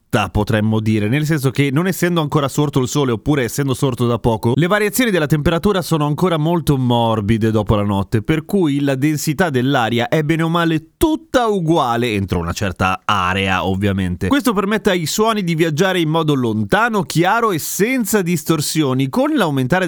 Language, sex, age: Italian, male, 30-49